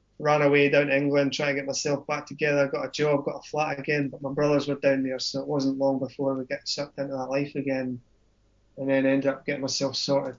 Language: English